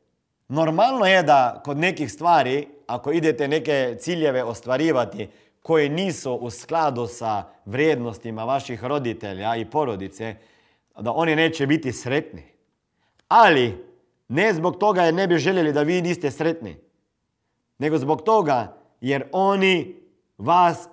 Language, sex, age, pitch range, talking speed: Croatian, male, 40-59, 145-215 Hz, 125 wpm